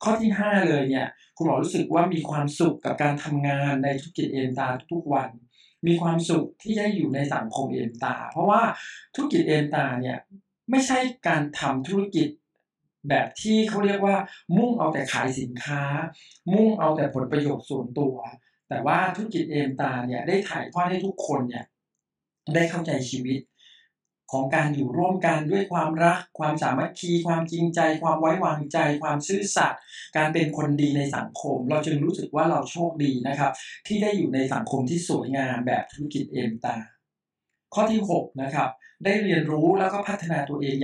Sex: male